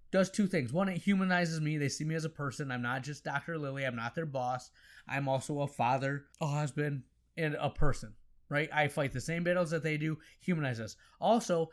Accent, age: American, 20-39